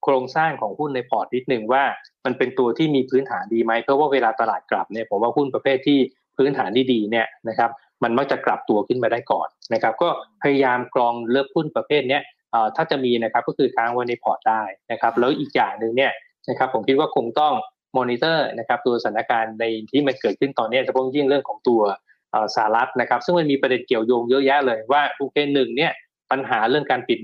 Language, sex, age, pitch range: Thai, male, 20-39, 120-145 Hz